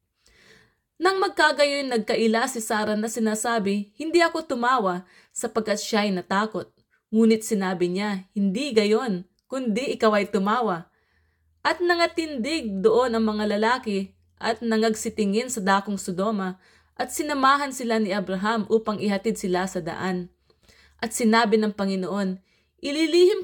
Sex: female